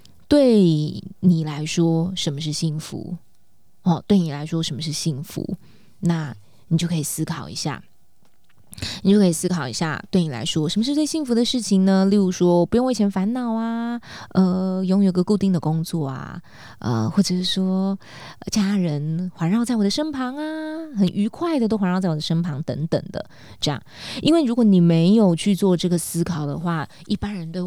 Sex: female